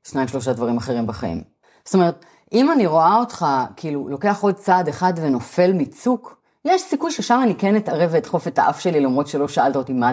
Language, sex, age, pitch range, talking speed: Hebrew, female, 30-49, 130-190 Hz, 200 wpm